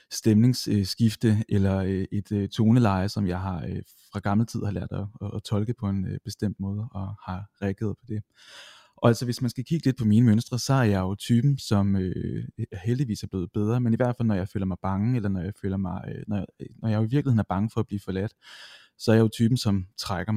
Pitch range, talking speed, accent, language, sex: 100-115 Hz, 225 wpm, native, Danish, male